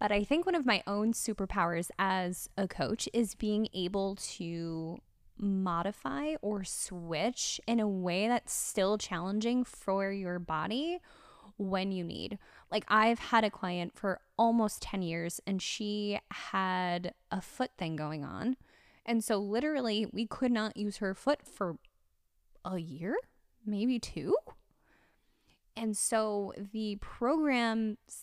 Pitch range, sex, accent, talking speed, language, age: 185-235 Hz, female, American, 140 wpm, English, 10-29